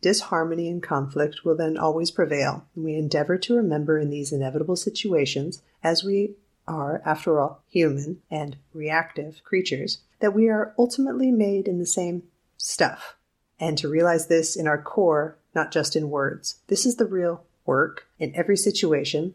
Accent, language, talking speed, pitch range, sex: American, English, 160 wpm, 155-190 Hz, female